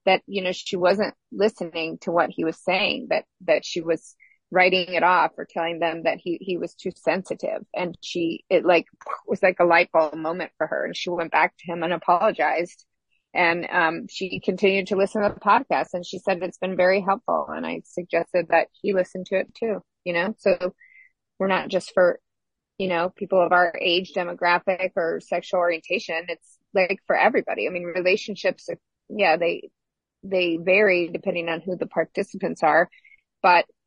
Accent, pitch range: American, 170-195 Hz